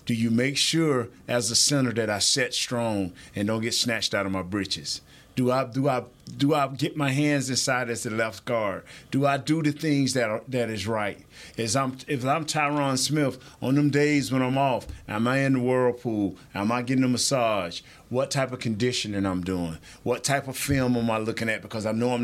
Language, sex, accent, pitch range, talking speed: English, male, American, 115-135 Hz, 225 wpm